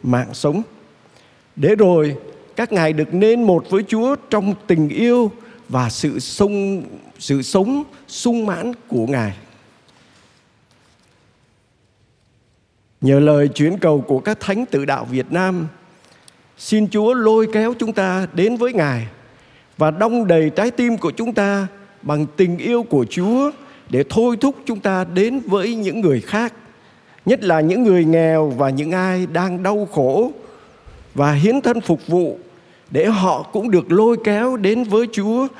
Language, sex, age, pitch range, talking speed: Vietnamese, male, 50-69, 135-205 Hz, 155 wpm